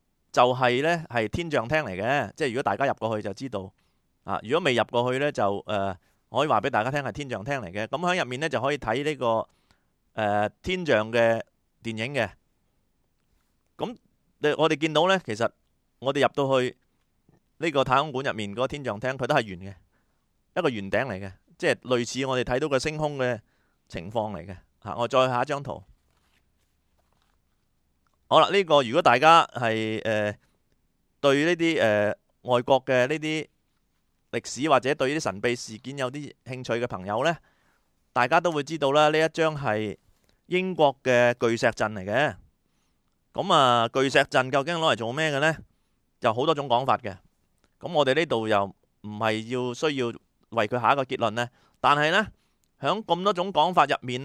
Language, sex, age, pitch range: Chinese, male, 30-49, 105-145 Hz